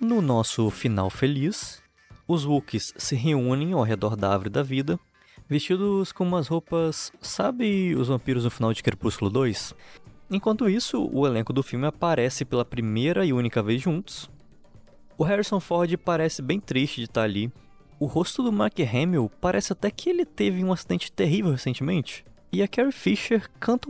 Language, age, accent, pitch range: Portuguese, 20-39, Brazilian, 120-185 Hz